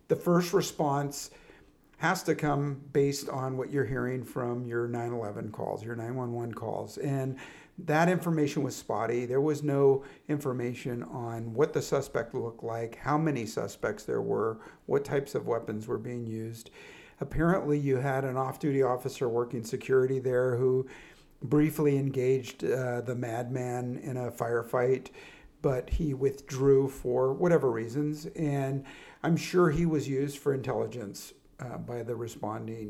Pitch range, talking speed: 120-150 Hz, 150 wpm